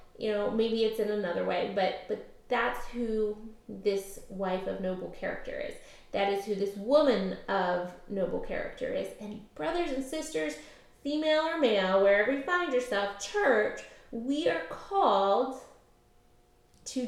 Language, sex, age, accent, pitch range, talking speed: English, female, 20-39, American, 200-245 Hz, 150 wpm